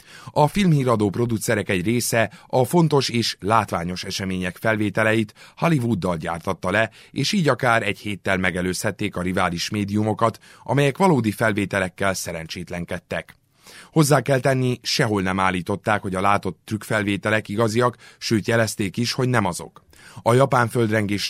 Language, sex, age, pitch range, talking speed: Hungarian, male, 30-49, 95-120 Hz, 130 wpm